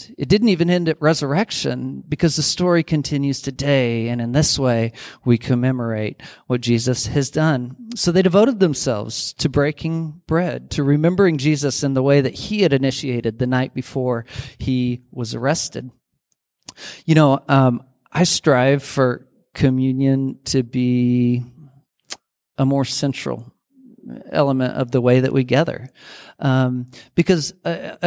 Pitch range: 125-160 Hz